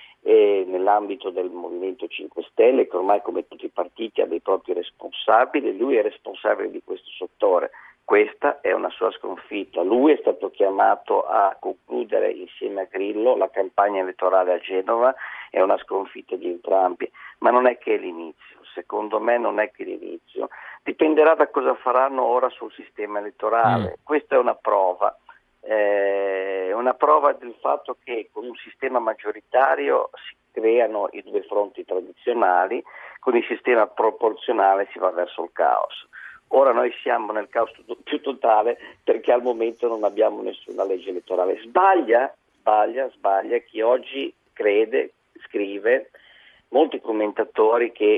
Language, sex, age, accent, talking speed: Italian, male, 50-69, native, 150 wpm